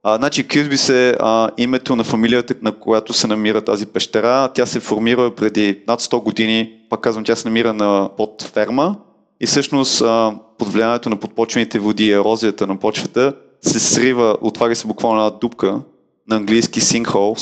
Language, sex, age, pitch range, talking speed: Bulgarian, male, 30-49, 105-125 Hz, 165 wpm